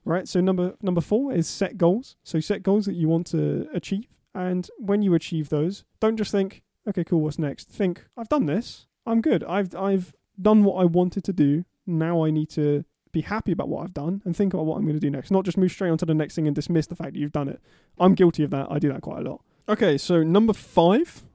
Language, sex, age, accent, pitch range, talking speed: English, male, 20-39, British, 150-185 Hz, 255 wpm